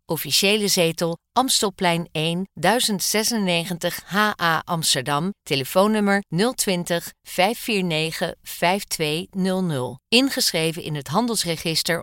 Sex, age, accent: female, 50-69, Dutch